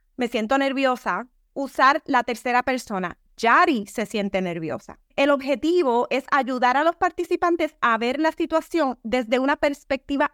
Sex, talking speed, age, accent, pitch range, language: female, 145 wpm, 30-49, American, 225-305 Hz, English